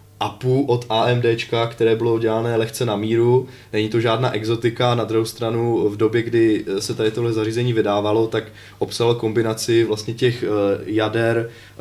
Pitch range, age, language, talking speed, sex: 100-115 Hz, 20-39, Czech, 160 wpm, male